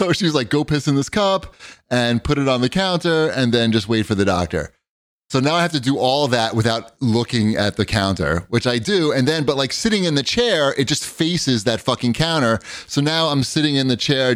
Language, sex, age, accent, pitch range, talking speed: English, male, 30-49, American, 110-140 Hz, 245 wpm